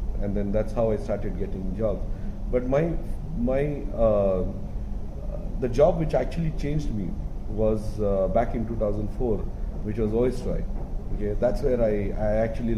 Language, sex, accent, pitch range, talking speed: English, male, Indian, 100-120 Hz, 160 wpm